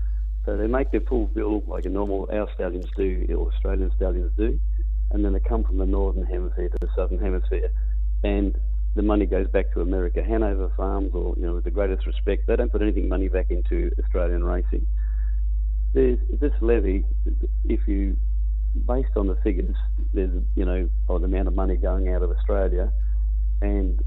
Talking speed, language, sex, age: 185 wpm, English, male, 50-69